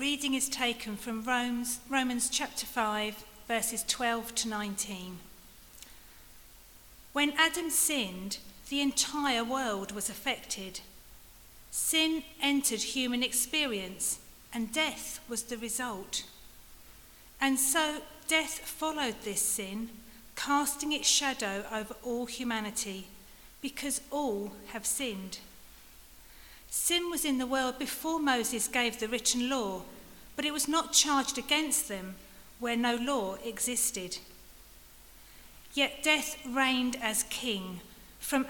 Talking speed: 115 wpm